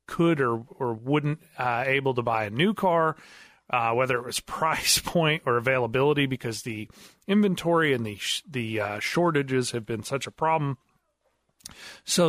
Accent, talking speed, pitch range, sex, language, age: American, 165 wpm, 120-155 Hz, male, English, 30-49